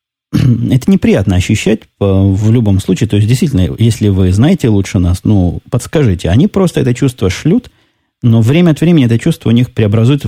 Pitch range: 100-120 Hz